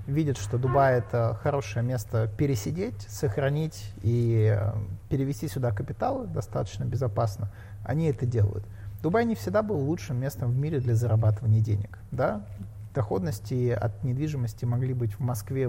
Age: 30-49